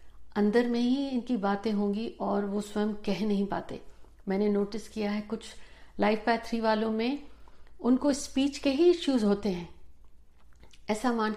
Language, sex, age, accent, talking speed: Hindi, female, 50-69, native, 160 wpm